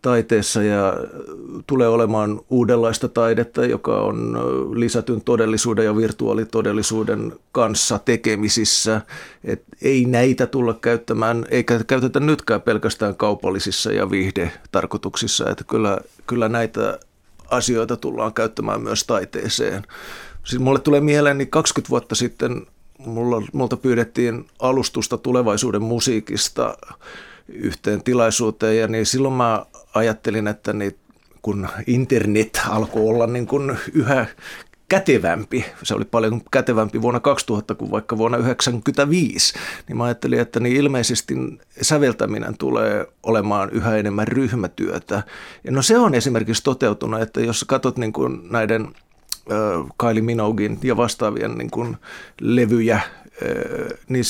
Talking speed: 125 wpm